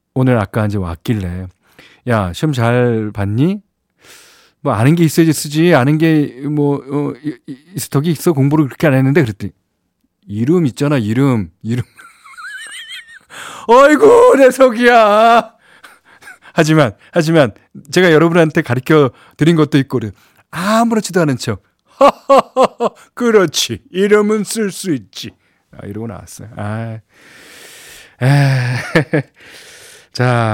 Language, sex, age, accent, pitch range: Korean, male, 40-59, native, 110-160 Hz